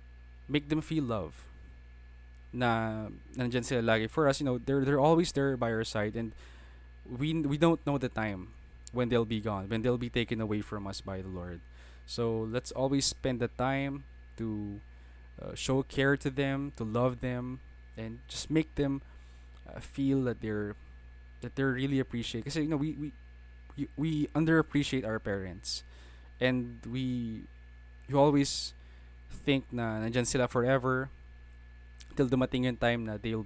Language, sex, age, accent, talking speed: English, male, 20-39, Filipino, 160 wpm